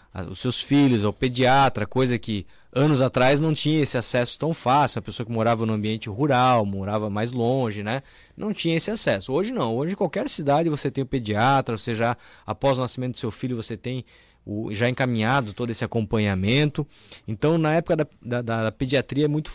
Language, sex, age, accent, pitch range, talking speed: Portuguese, male, 20-39, Brazilian, 115-145 Hz, 200 wpm